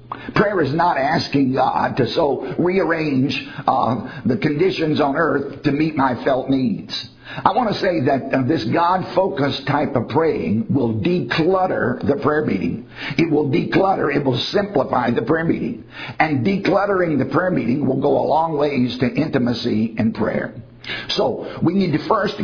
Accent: American